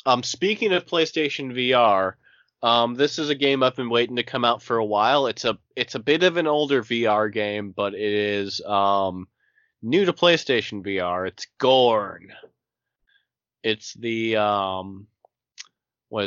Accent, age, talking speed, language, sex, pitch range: American, 30-49, 160 wpm, English, male, 105-130 Hz